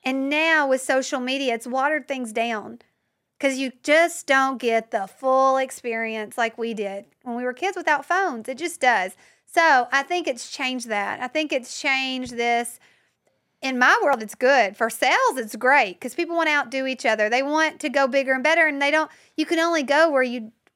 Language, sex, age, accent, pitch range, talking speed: English, female, 40-59, American, 230-295 Hz, 210 wpm